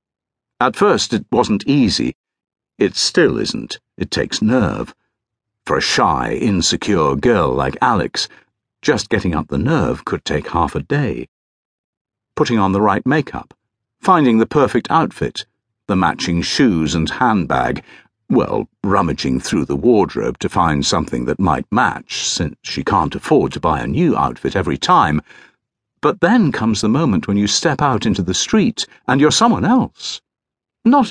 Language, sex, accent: English, male, British